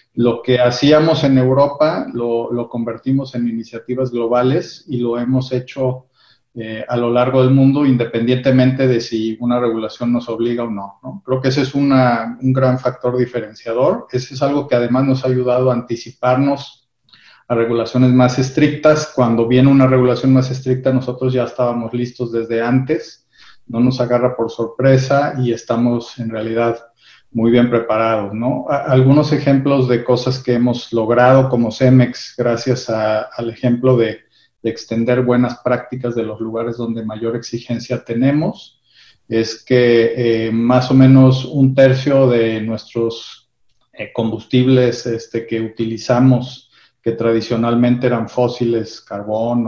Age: 40-59